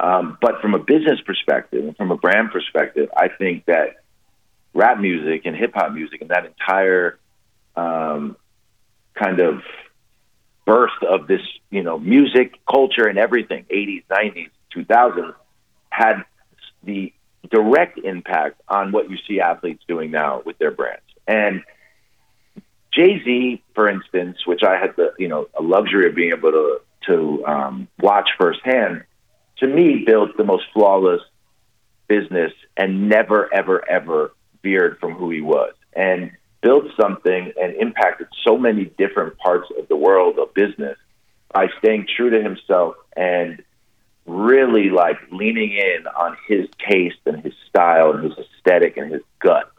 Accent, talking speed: American, 150 wpm